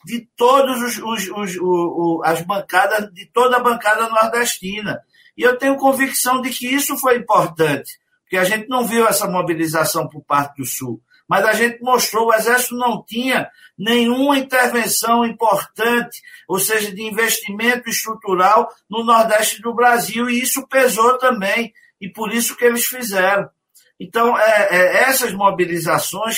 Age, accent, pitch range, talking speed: 50-69, Brazilian, 195-245 Hz, 140 wpm